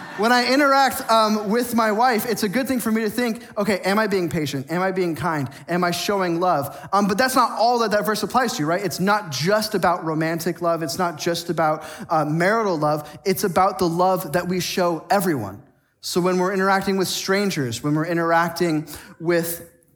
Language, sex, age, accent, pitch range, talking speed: English, male, 20-39, American, 145-190 Hz, 210 wpm